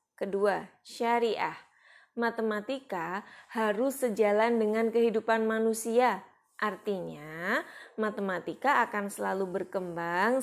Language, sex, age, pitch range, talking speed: Indonesian, female, 20-39, 195-245 Hz, 75 wpm